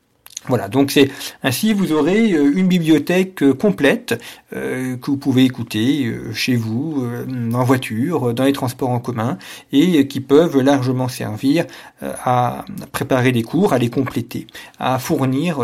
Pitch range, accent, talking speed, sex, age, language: 125-145 Hz, French, 140 wpm, male, 50-69, French